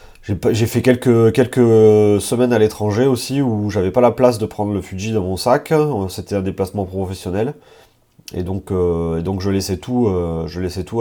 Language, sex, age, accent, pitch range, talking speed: French, male, 30-49, French, 95-125 Hz, 195 wpm